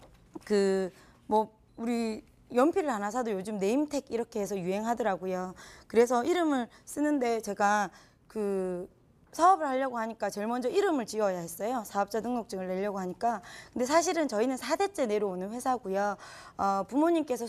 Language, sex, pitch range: Korean, female, 205-275 Hz